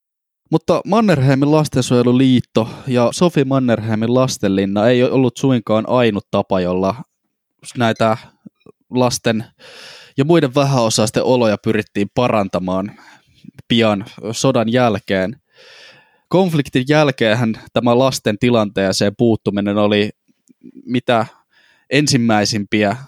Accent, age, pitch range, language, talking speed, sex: native, 20-39, 105-135 Hz, Finnish, 85 wpm, male